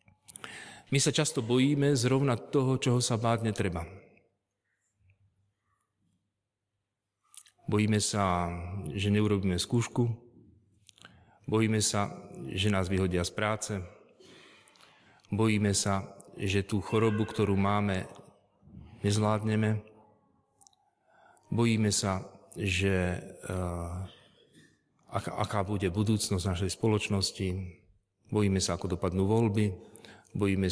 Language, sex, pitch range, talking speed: Slovak, male, 95-110 Hz, 90 wpm